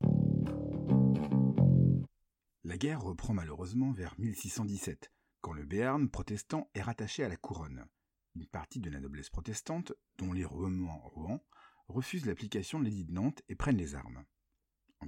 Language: French